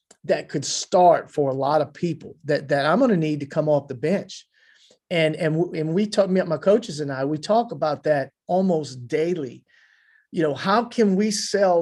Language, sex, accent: English, male, American